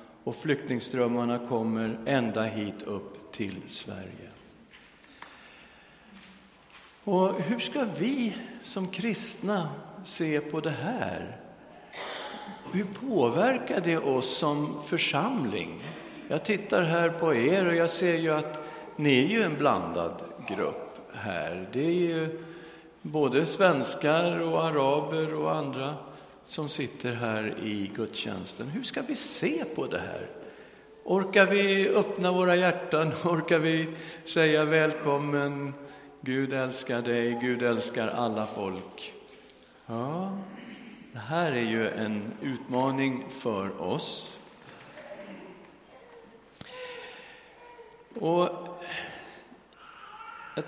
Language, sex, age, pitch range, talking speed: Swedish, male, 50-69, 125-195 Hz, 105 wpm